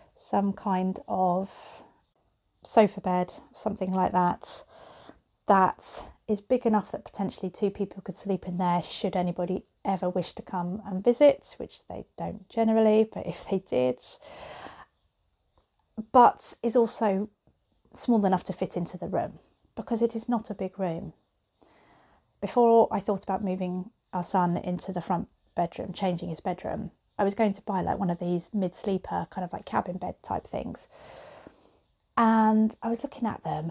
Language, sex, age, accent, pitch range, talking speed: English, female, 30-49, British, 180-225 Hz, 160 wpm